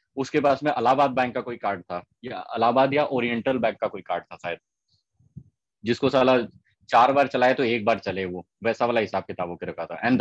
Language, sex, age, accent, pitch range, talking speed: Hindi, male, 20-39, native, 110-145 Hz, 215 wpm